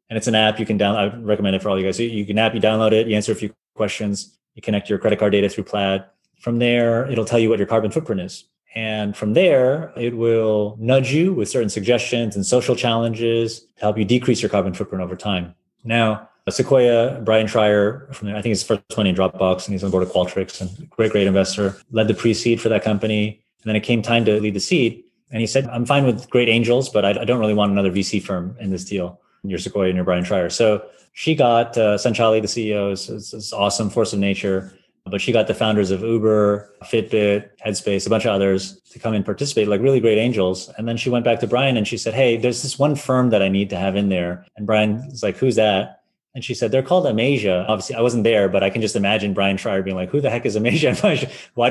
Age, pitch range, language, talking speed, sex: 30-49, 100-115 Hz, English, 255 wpm, male